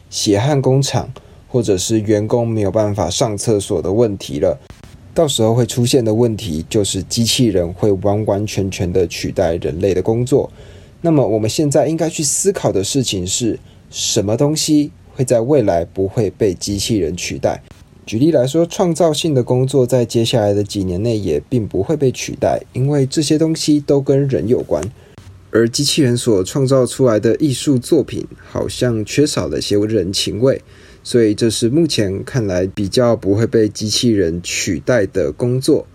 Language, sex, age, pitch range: Chinese, male, 20-39, 100-130 Hz